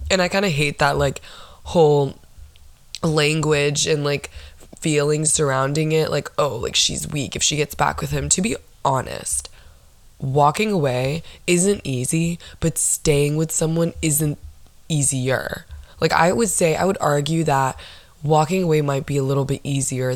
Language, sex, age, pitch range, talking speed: English, female, 20-39, 135-160 Hz, 160 wpm